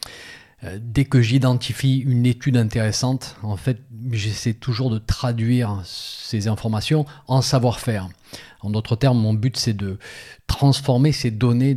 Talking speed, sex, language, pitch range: 135 wpm, male, French, 110-130 Hz